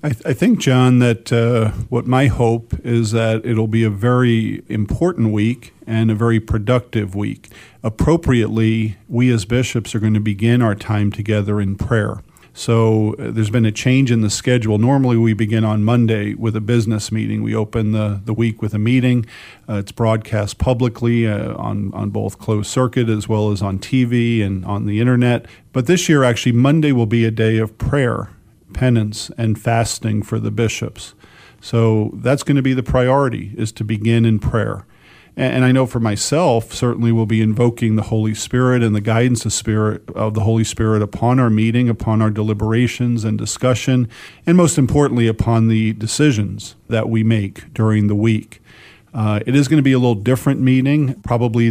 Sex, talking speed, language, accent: male, 190 wpm, English, American